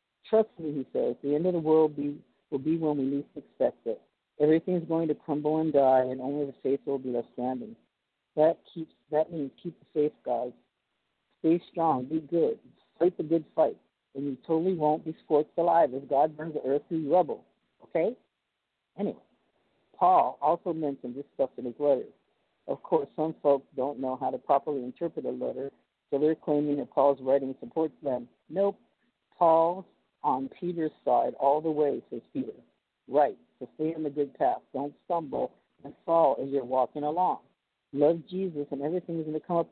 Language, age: English, 50-69